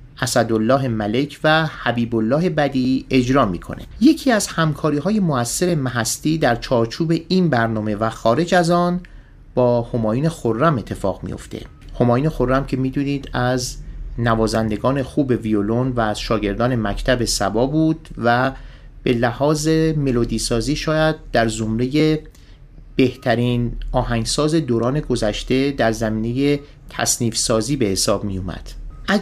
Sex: male